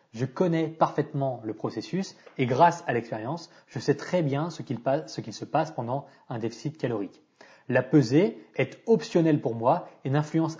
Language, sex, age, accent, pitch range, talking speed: French, male, 20-39, French, 130-160 Hz, 180 wpm